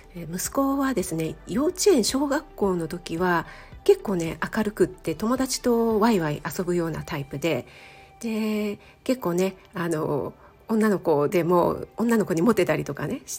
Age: 40-59